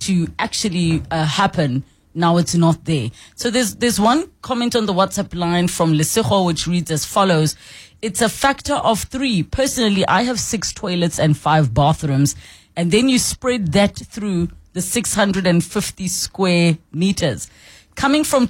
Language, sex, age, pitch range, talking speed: English, female, 30-49, 165-210 Hz, 155 wpm